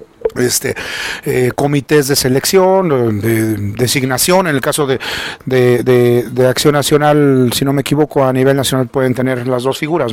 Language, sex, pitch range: Spanish, male, 130-165 Hz